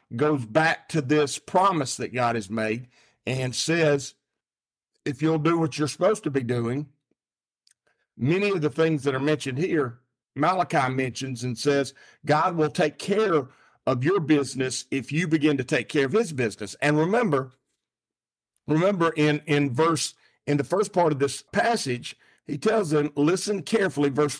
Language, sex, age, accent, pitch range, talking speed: English, male, 50-69, American, 135-165 Hz, 165 wpm